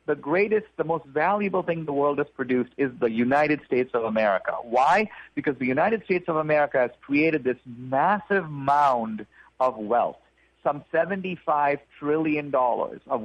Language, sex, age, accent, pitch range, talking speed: English, male, 50-69, American, 135-165 Hz, 155 wpm